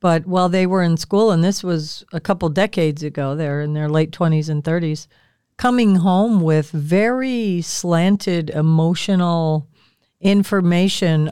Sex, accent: female, American